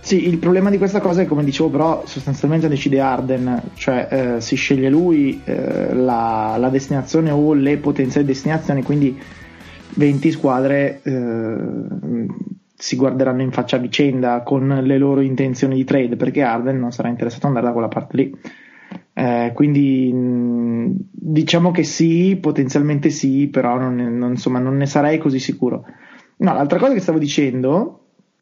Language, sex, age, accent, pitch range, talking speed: Italian, male, 20-39, native, 130-170 Hz, 160 wpm